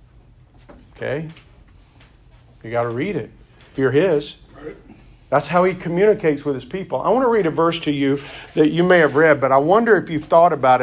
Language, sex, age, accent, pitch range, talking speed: English, male, 50-69, American, 130-180 Hz, 190 wpm